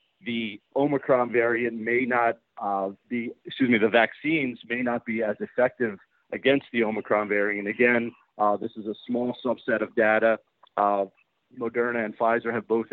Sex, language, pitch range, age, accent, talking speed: male, English, 110-130 Hz, 40-59, American, 160 wpm